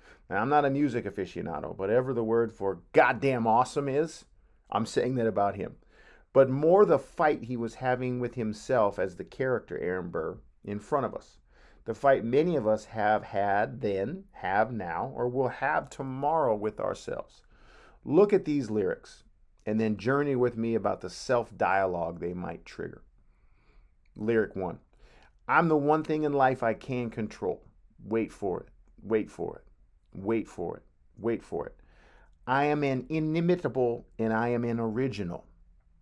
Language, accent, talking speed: English, American, 165 wpm